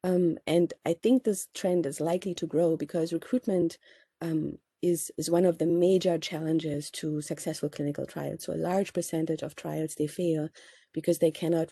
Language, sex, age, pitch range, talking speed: English, female, 30-49, 150-175 Hz, 180 wpm